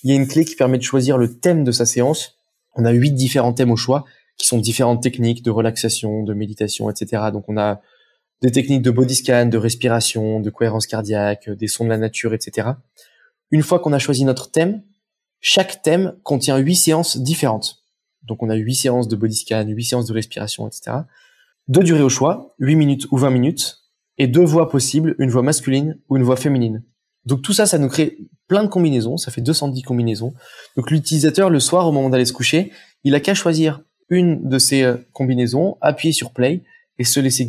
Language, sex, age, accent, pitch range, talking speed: French, male, 20-39, French, 120-155 Hz, 210 wpm